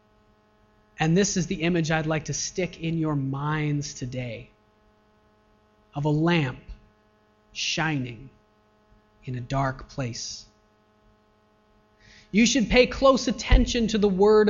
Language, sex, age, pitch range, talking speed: English, male, 30-49, 105-170 Hz, 120 wpm